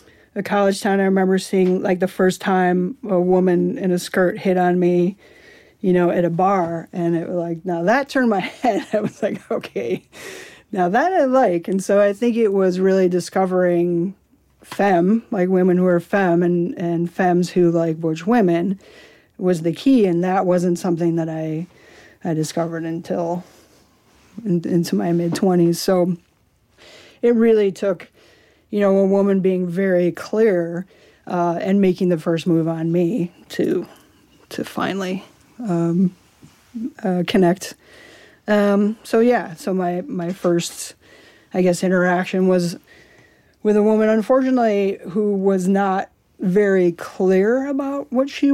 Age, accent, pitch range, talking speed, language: 40-59, American, 175-200 Hz, 155 wpm, English